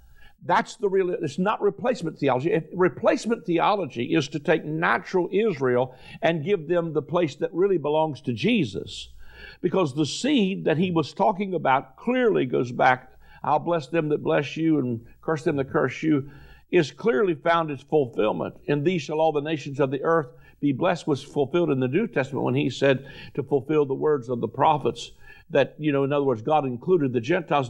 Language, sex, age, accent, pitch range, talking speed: English, male, 50-69, American, 130-165 Hz, 195 wpm